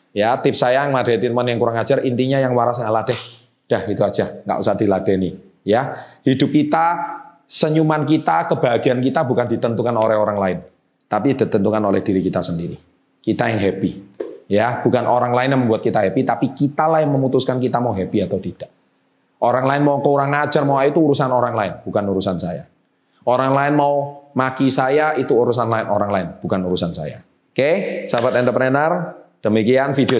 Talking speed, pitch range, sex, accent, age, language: 180 wpm, 115-145 Hz, male, native, 30-49, Indonesian